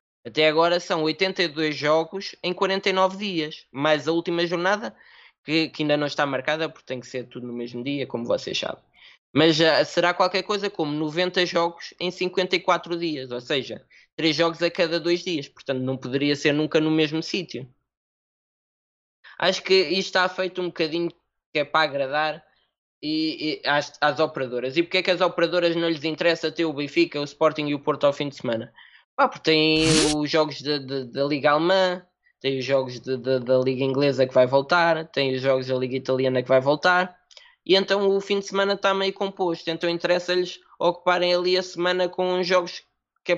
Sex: male